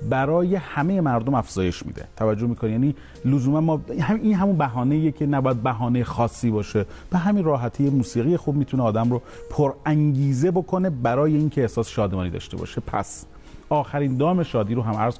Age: 40-59